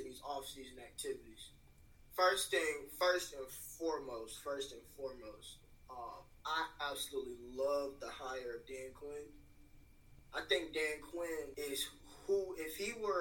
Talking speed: 130 wpm